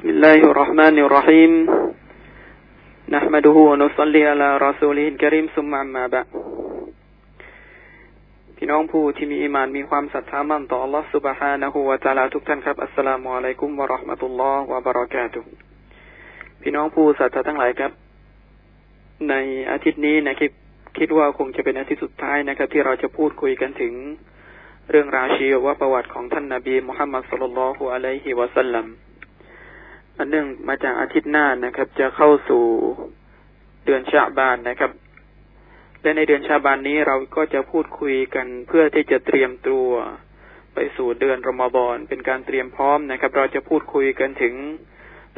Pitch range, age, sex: 130-150 Hz, 20-39, male